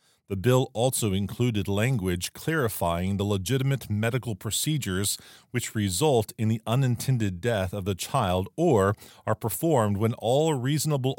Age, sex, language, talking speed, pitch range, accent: 40-59, male, English, 135 wpm, 95-125 Hz, American